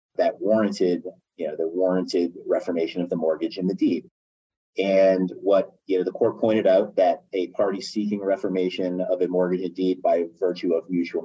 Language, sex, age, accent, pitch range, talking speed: English, male, 30-49, American, 90-130 Hz, 185 wpm